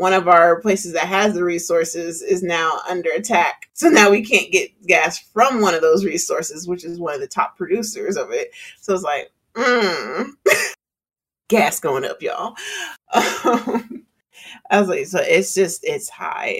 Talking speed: 175 wpm